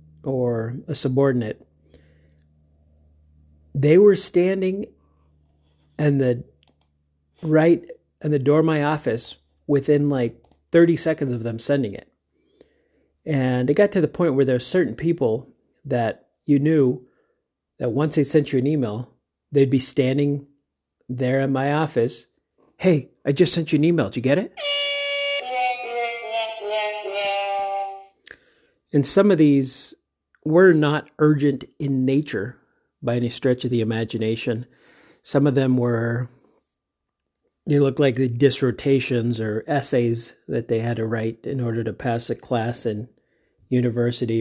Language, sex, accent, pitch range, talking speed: English, male, American, 115-155 Hz, 135 wpm